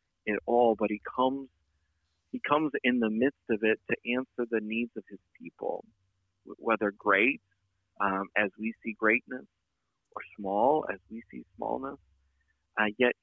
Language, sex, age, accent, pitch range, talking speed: English, male, 40-59, American, 100-120 Hz, 150 wpm